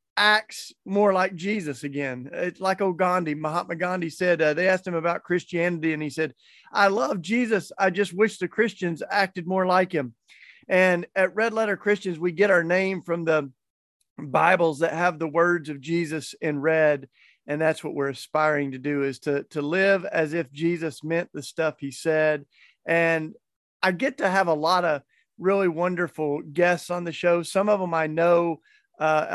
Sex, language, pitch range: male, English, 160-190 Hz